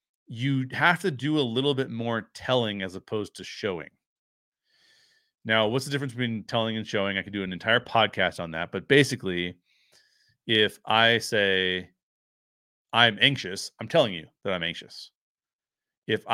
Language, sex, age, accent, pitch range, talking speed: English, male, 40-59, American, 95-120 Hz, 160 wpm